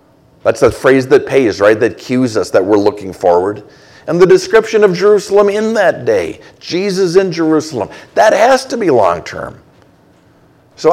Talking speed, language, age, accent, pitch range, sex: 165 wpm, English, 50-69, American, 130-165 Hz, male